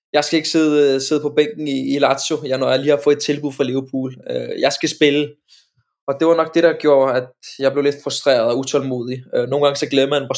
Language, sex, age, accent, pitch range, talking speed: Danish, male, 20-39, native, 130-150 Hz, 250 wpm